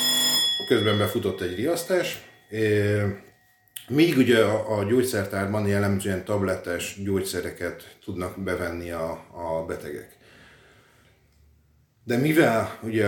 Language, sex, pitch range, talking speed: Hungarian, male, 95-115 Hz, 95 wpm